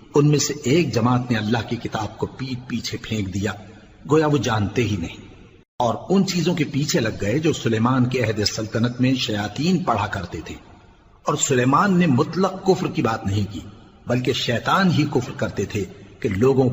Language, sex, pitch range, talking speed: Urdu, male, 105-150 Hz, 40 wpm